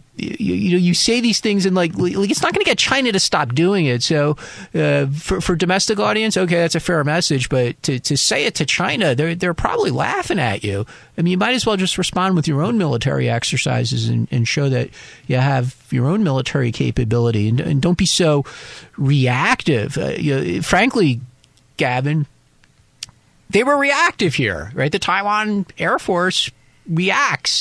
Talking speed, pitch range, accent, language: 190 wpm, 130-180 Hz, American, English